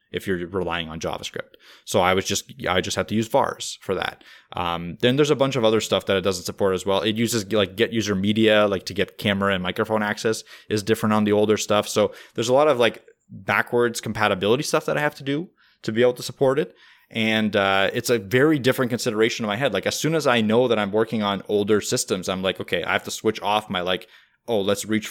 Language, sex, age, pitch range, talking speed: English, male, 20-39, 95-110 Hz, 250 wpm